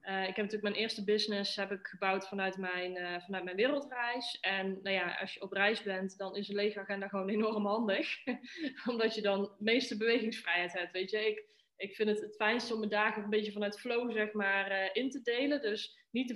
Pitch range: 190-220 Hz